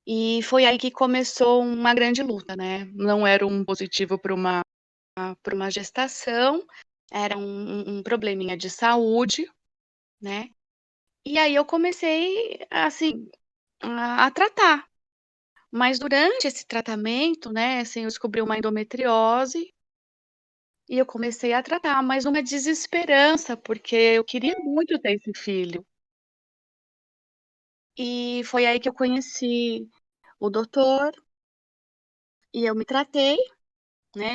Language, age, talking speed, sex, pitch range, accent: Portuguese, 20-39, 120 wpm, female, 210-265 Hz, Brazilian